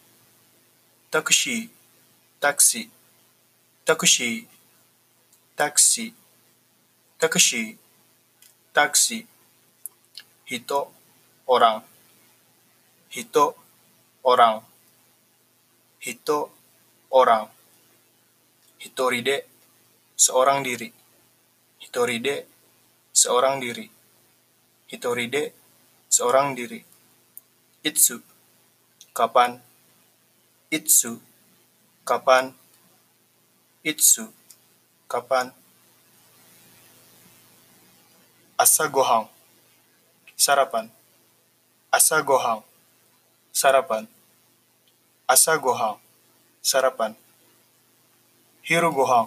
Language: Japanese